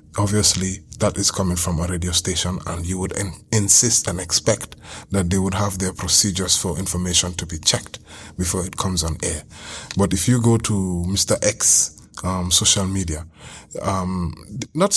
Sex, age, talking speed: male, 30-49, 170 wpm